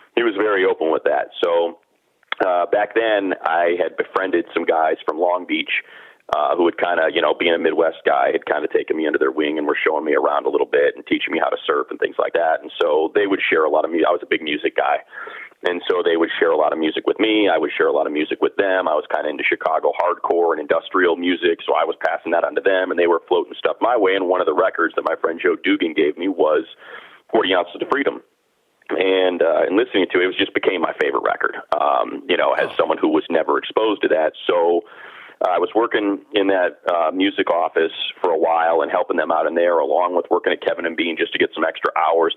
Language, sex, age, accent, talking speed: English, male, 30-49, American, 265 wpm